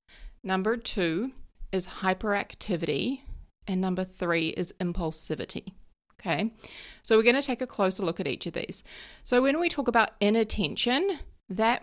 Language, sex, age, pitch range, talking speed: English, female, 30-49, 185-245 Hz, 145 wpm